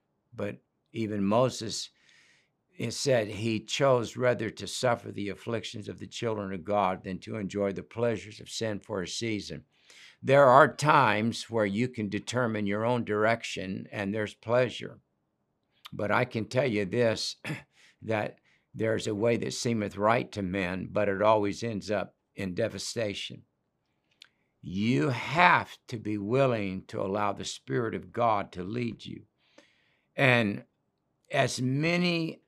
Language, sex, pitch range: English, male, 105-125 Hz